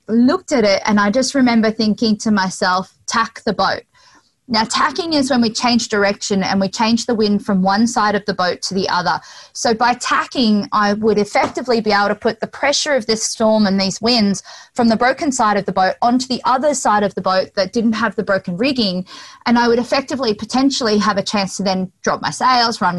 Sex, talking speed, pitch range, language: female, 225 wpm, 195-245 Hz, English